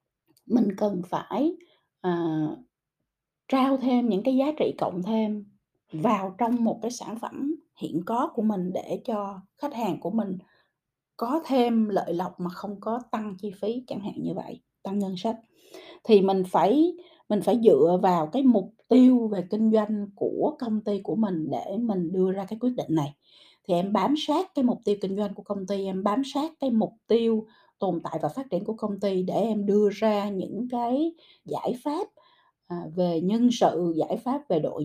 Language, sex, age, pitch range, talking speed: Vietnamese, female, 20-39, 180-245 Hz, 190 wpm